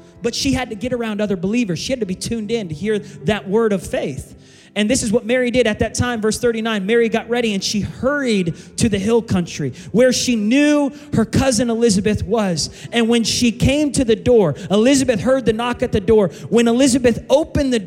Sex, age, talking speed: male, 30-49, 220 wpm